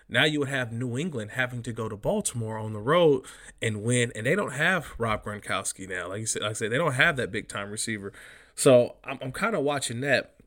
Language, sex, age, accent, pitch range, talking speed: English, male, 20-39, American, 110-140 Hz, 240 wpm